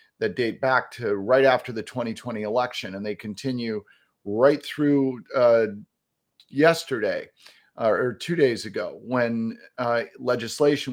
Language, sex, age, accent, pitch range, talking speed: English, male, 40-59, American, 120-160 Hz, 130 wpm